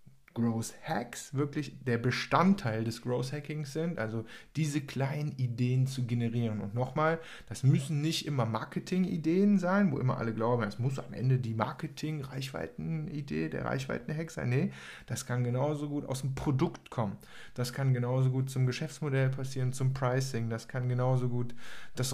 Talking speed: 170 wpm